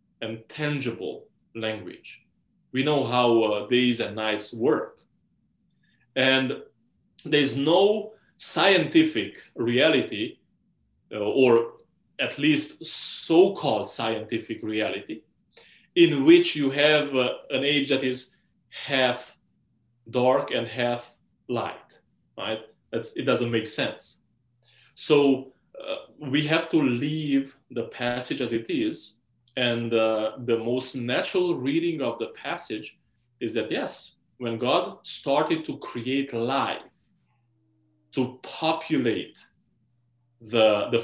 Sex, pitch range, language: male, 115-150 Hz, English